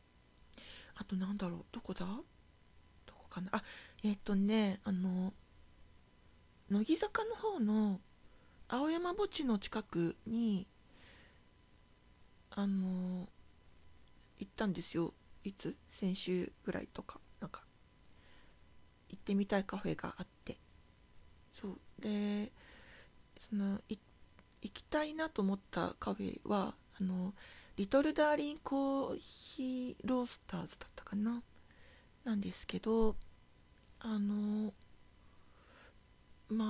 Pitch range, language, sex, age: 190-255 Hz, Japanese, female, 40-59